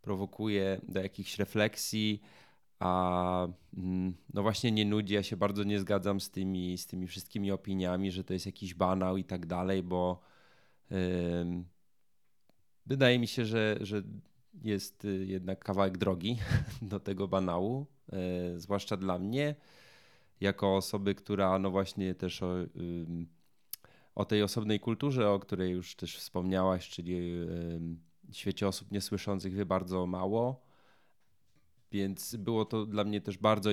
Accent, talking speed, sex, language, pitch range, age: native, 140 wpm, male, Polish, 95-110 Hz, 20-39